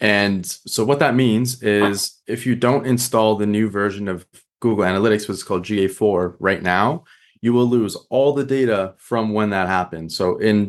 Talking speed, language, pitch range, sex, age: 190 wpm, English, 100-120 Hz, male, 20-39